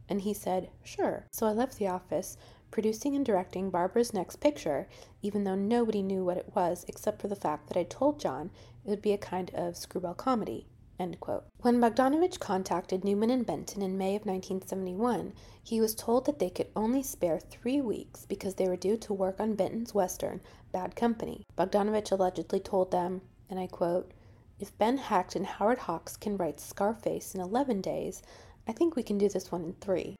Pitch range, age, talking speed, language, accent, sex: 185-225 Hz, 30-49, 195 wpm, English, American, female